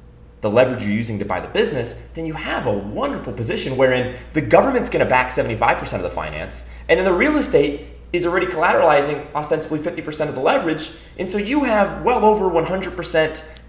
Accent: American